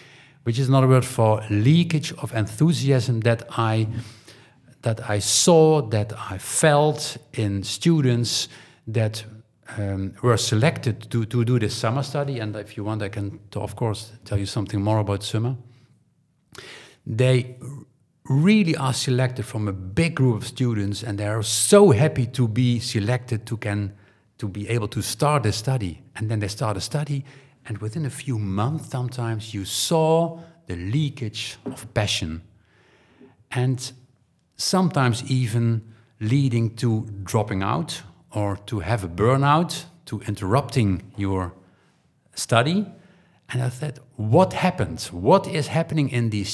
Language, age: English, 50-69